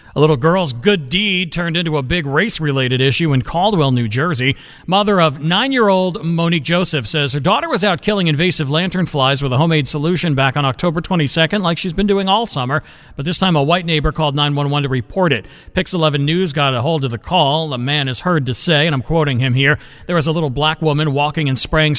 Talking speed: 225 wpm